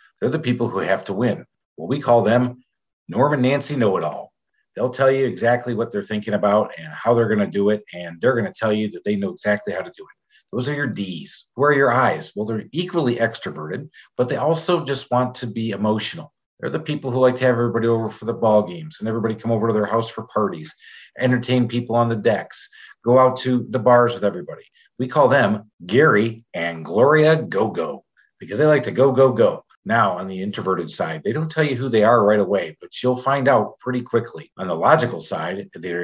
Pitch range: 105-135 Hz